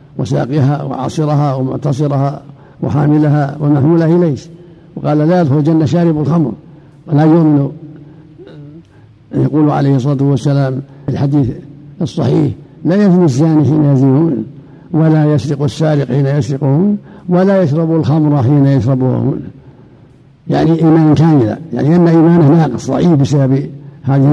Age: 60-79